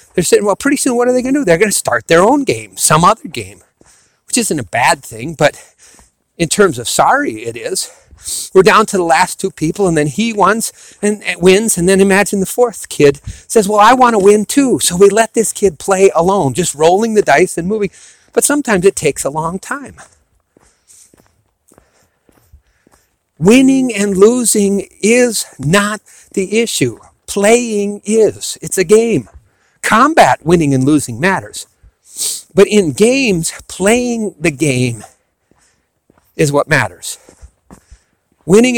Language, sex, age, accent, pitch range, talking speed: English, male, 50-69, American, 160-210 Hz, 165 wpm